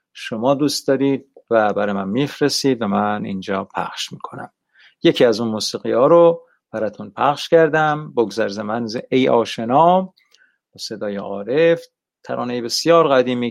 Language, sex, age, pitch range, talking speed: Persian, male, 50-69, 110-145 Hz, 140 wpm